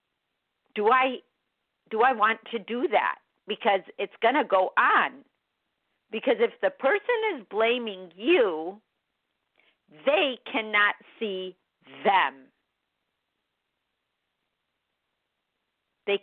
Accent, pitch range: American, 180-240 Hz